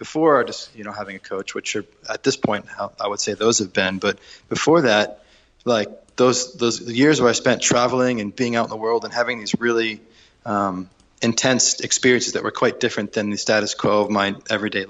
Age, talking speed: 20-39, 220 wpm